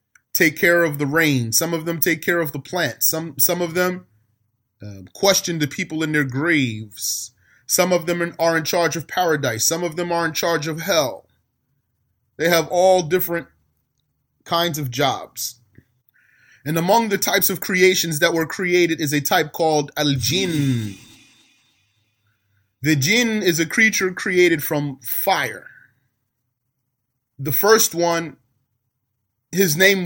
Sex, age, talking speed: male, 30-49, 150 wpm